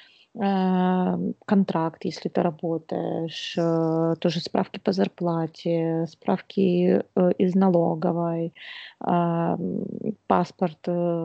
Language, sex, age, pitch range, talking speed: Russian, female, 20-39, 175-200 Hz, 65 wpm